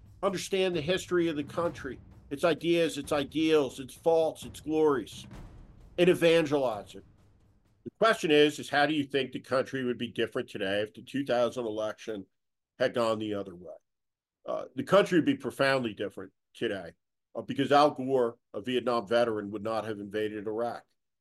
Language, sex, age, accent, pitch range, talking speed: English, male, 50-69, American, 115-140 Hz, 170 wpm